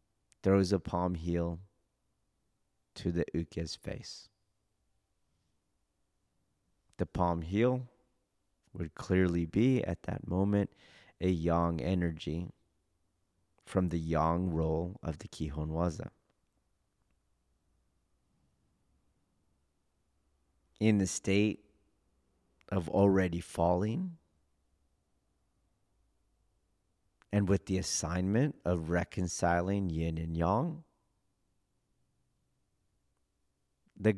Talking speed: 75 wpm